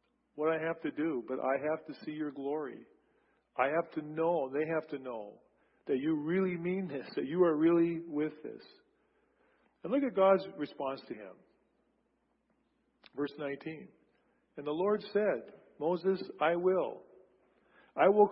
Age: 50-69